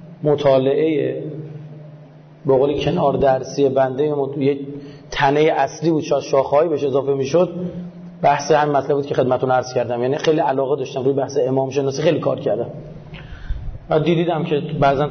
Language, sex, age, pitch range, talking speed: Persian, male, 30-49, 140-170 Hz, 150 wpm